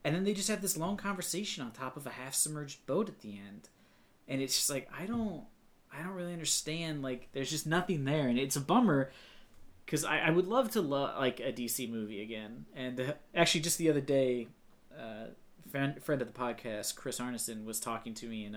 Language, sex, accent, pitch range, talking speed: English, male, American, 115-165 Hz, 225 wpm